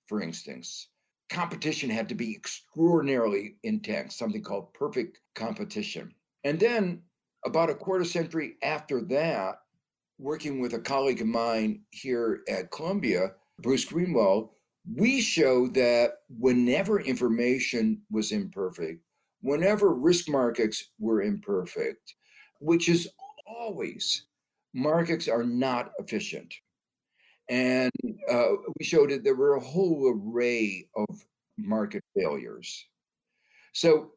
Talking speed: 110 wpm